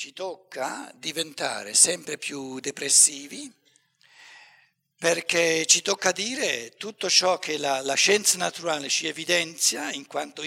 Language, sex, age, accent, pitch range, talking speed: Italian, male, 60-79, native, 145-195 Hz, 120 wpm